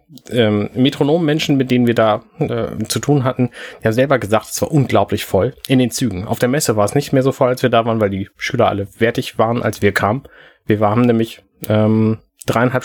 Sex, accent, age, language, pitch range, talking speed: male, German, 30-49, German, 105-130 Hz, 220 wpm